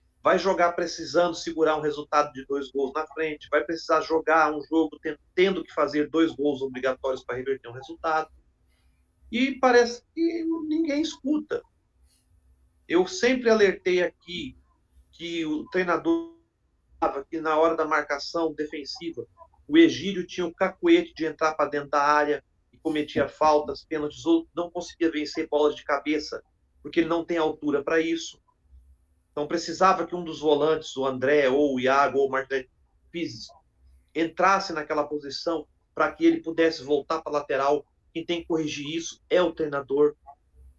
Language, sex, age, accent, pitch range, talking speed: Portuguese, male, 40-59, Brazilian, 145-180 Hz, 155 wpm